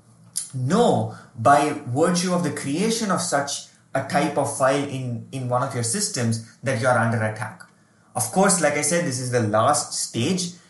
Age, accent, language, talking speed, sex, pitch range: 20-39, Indian, English, 185 wpm, male, 120-165 Hz